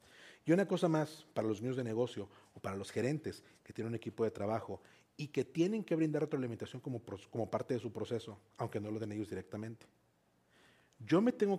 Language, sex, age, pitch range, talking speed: Spanish, male, 40-59, 105-150 Hz, 205 wpm